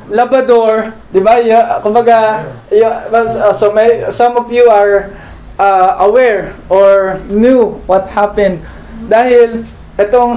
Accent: native